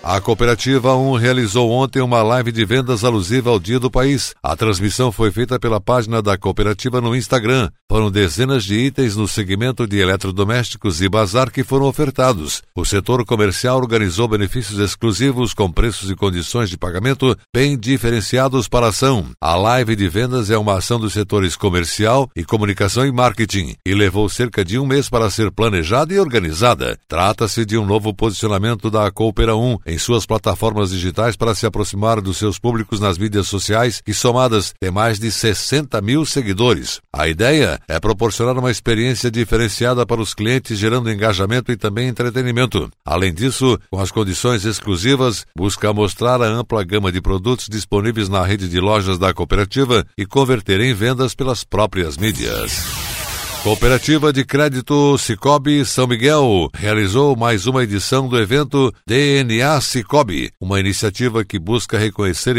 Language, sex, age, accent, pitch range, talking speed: Portuguese, male, 60-79, Brazilian, 100-125 Hz, 160 wpm